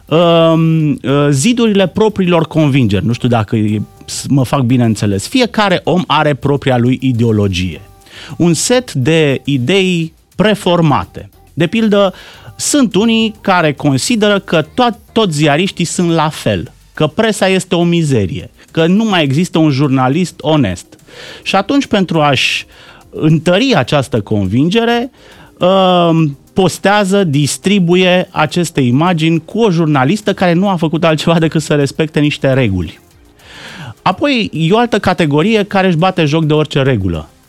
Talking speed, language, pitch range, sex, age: 135 wpm, Romanian, 125-180 Hz, male, 30-49